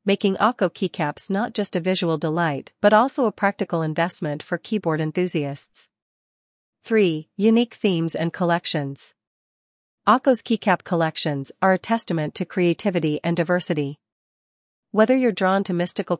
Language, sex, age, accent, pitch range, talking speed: English, female, 40-59, American, 160-195 Hz, 135 wpm